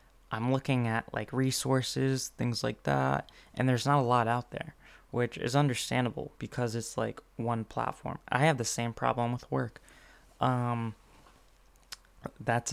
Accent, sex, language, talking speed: American, male, English, 150 wpm